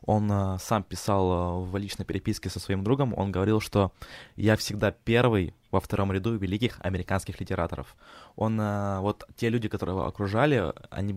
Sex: male